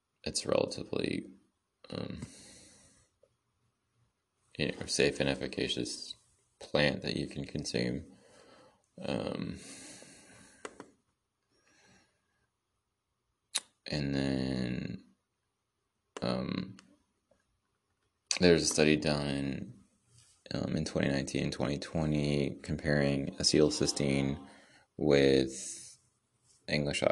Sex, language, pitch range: male, English, 70-90 Hz